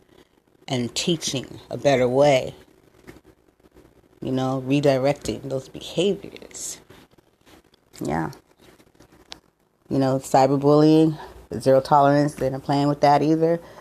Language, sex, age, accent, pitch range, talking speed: English, female, 30-49, American, 130-155 Hz, 95 wpm